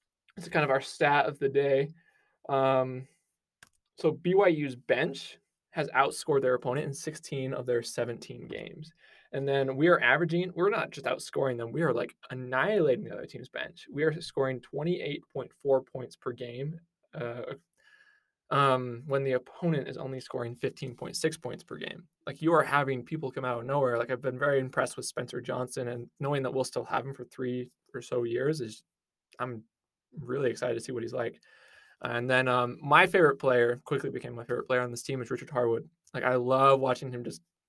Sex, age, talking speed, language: male, 20-39, 190 wpm, English